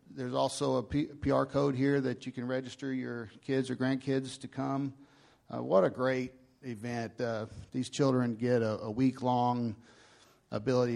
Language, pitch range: English, 115-140 Hz